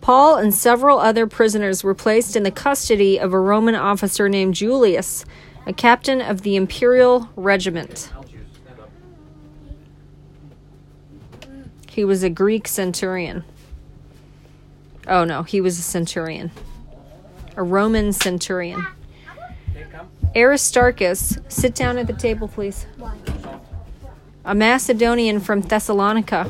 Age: 40-59